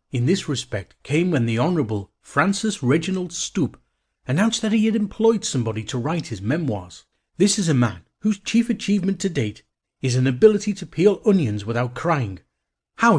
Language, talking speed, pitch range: English, 175 wpm, 120-185 Hz